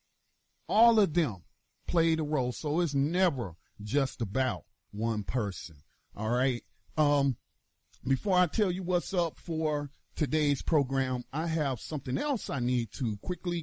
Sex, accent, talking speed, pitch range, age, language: male, American, 145 wpm, 120-160 Hz, 40-59, English